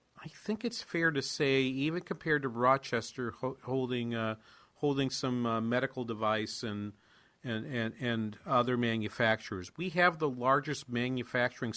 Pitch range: 115-150 Hz